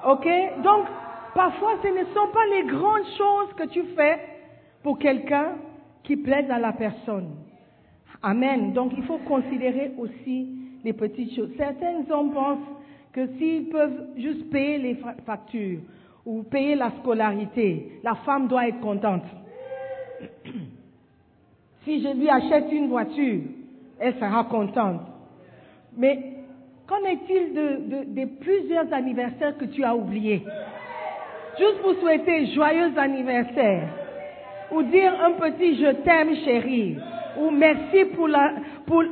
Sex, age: female, 50-69